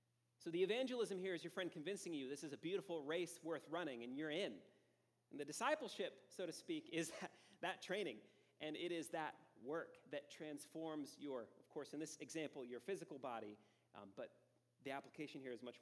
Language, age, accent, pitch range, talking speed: English, 40-59, American, 120-190 Hz, 195 wpm